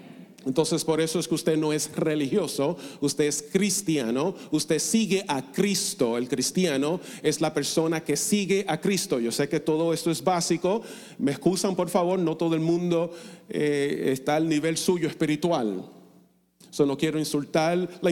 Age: 40-59